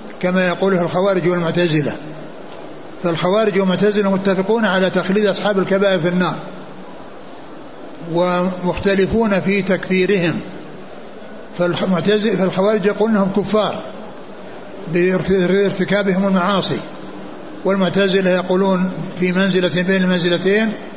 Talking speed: 85 wpm